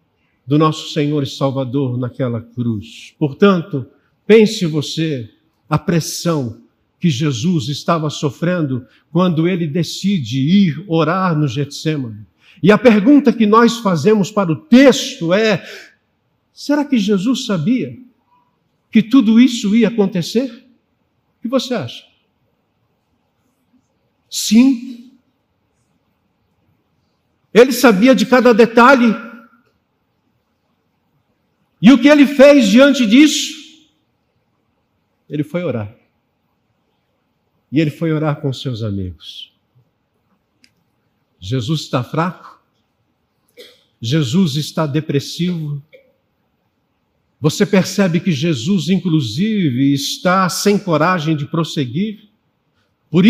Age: 60-79